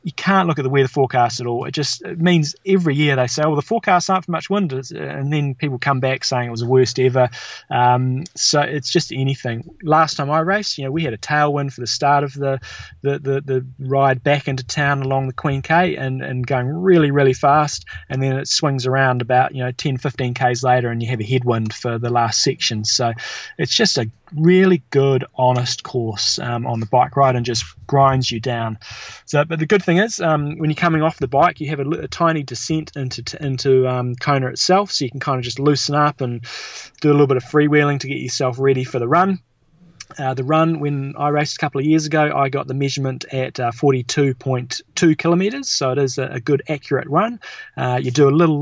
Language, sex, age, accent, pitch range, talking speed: English, male, 20-39, Australian, 125-150 Hz, 230 wpm